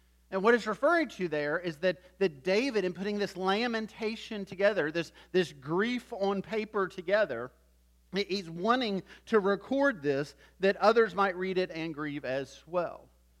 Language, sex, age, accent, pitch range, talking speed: English, male, 40-59, American, 145-195 Hz, 155 wpm